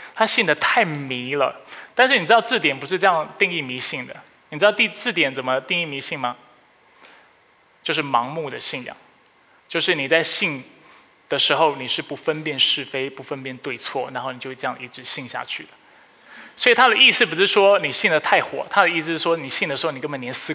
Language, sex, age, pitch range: Chinese, male, 20-39, 140-195 Hz